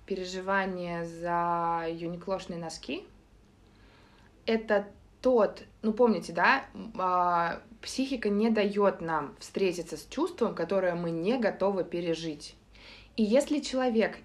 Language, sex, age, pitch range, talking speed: Russian, female, 20-39, 160-210 Hz, 100 wpm